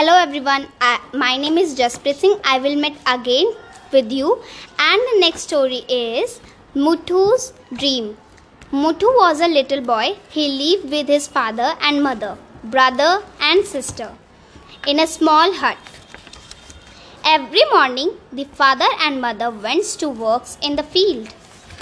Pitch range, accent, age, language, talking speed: 260-355 Hz, Indian, 20-39, English, 140 wpm